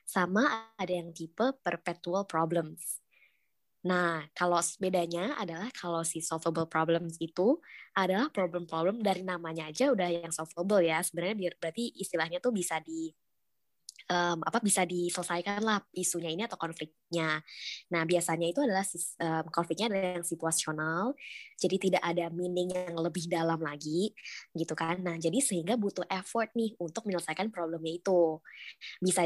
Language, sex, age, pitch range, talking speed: Indonesian, male, 20-39, 170-215 Hz, 140 wpm